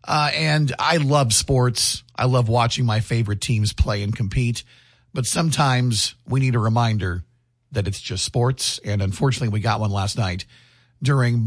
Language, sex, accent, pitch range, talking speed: English, male, American, 110-135 Hz, 165 wpm